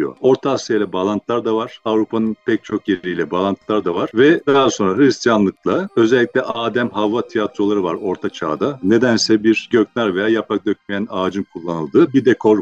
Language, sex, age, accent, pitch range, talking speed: Turkish, male, 50-69, native, 105-140 Hz, 155 wpm